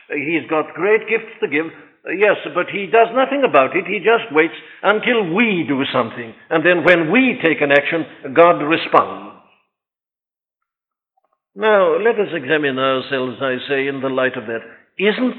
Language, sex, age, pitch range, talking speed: English, male, 60-79, 155-215 Hz, 165 wpm